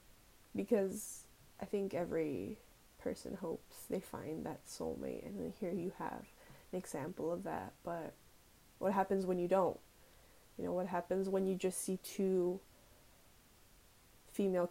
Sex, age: female, 20-39